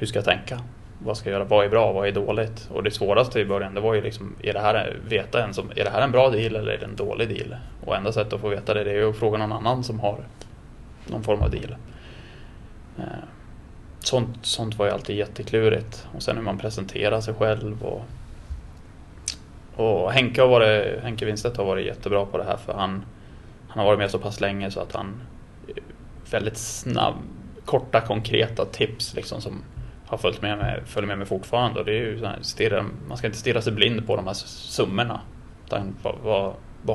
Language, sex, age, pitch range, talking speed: English, male, 20-39, 100-115 Hz, 215 wpm